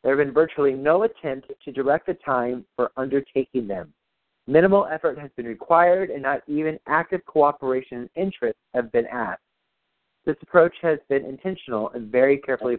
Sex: male